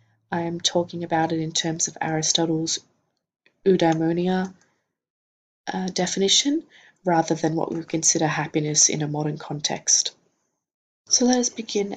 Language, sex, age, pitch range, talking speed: English, female, 20-39, 165-195 Hz, 130 wpm